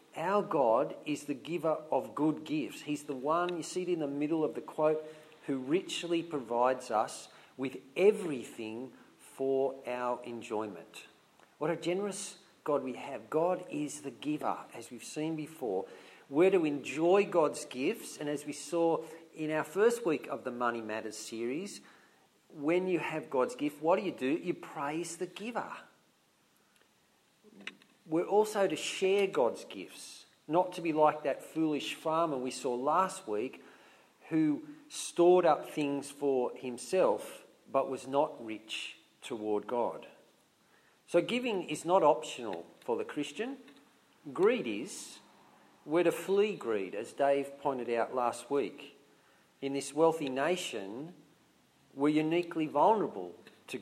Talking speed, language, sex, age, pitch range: 145 wpm, English, male, 50-69, 140-180 Hz